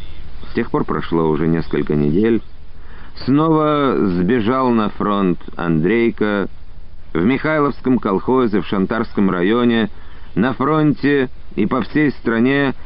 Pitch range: 80-125 Hz